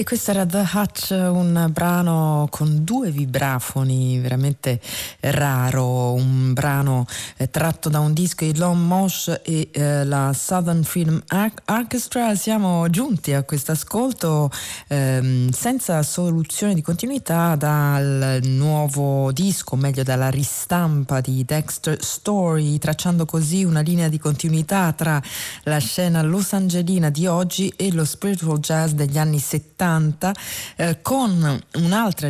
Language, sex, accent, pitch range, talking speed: Italian, female, native, 140-175 Hz, 130 wpm